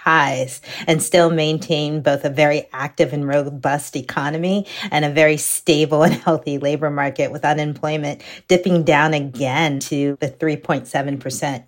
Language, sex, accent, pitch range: English, female, American, 140-170 Hz